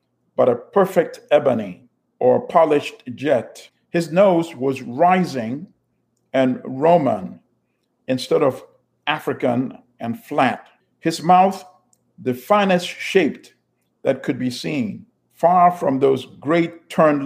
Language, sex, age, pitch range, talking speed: German, male, 50-69, 140-185 Hz, 110 wpm